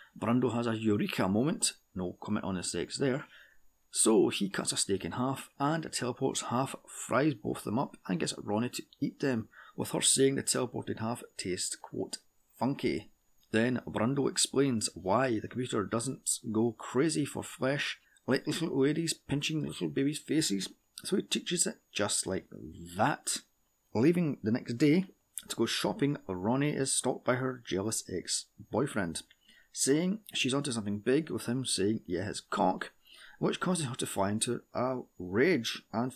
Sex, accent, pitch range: male, British, 110-135 Hz